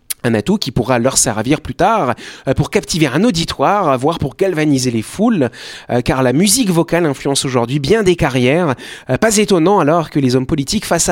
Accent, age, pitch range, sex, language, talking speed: French, 30-49, 130-190 Hz, male, French, 185 wpm